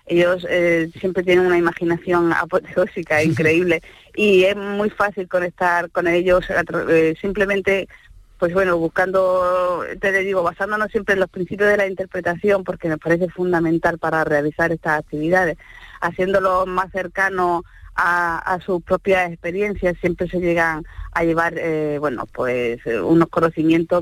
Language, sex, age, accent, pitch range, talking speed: Spanish, female, 30-49, Spanish, 175-205 Hz, 140 wpm